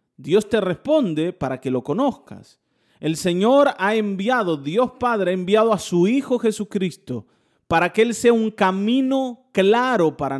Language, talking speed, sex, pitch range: Spanish, 155 wpm, male, 165-240 Hz